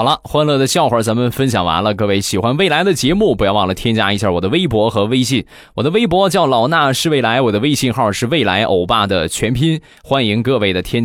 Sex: male